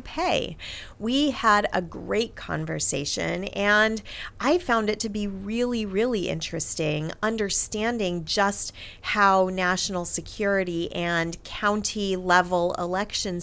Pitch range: 175-260 Hz